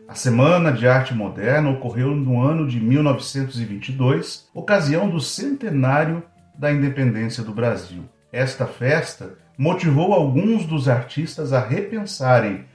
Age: 40-59